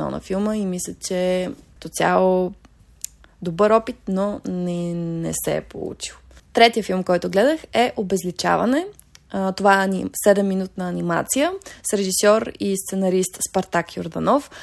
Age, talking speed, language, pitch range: 20-39, 130 wpm, Bulgarian, 185-215 Hz